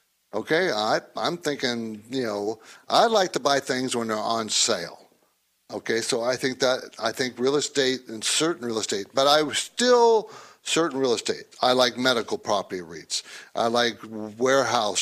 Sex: male